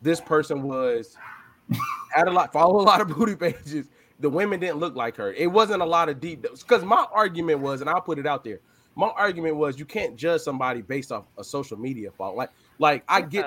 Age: 20-39